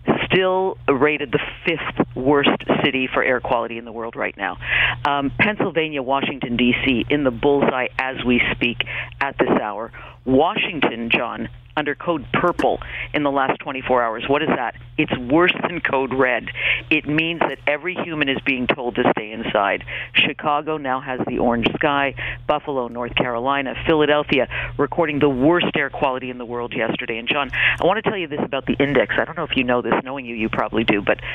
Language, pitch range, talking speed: English, 120-150 Hz, 190 wpm